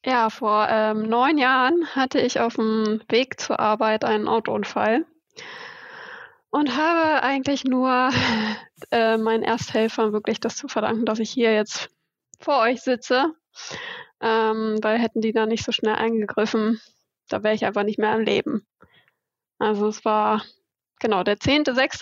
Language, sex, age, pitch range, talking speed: German, female, 20-39, 225-275 Hz, 145 wpm